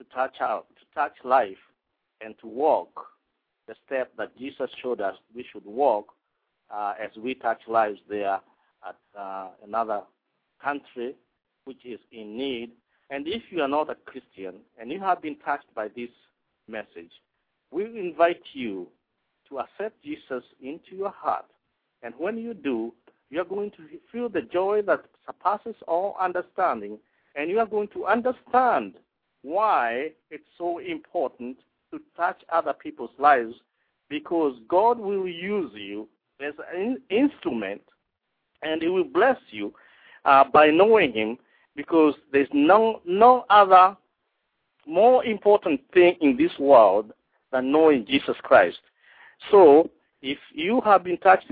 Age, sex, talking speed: 50-69, male, 140 wpm